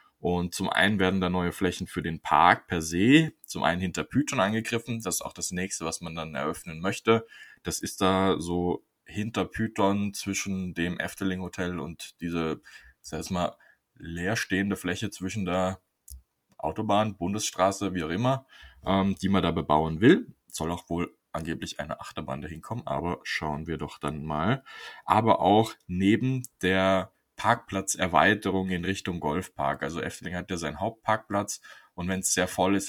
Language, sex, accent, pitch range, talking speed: German, male, German, 85-100 Hz, 165 wpm